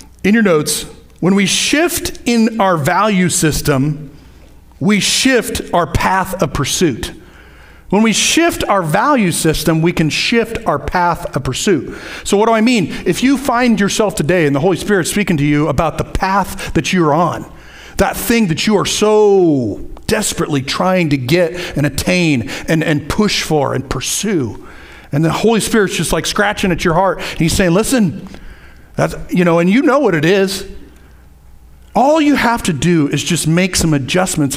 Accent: American